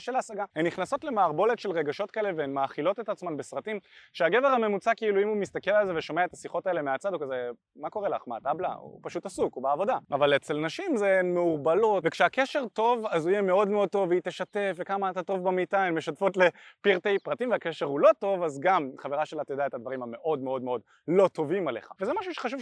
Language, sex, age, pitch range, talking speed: Hebrew, male, 20-39, 155-205 Hz, 220 wpm